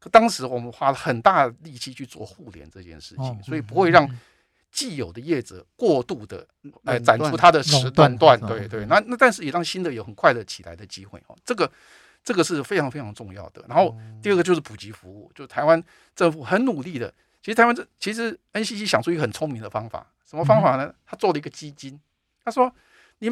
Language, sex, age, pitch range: Chinese, male, 50-69, 120-180 Hz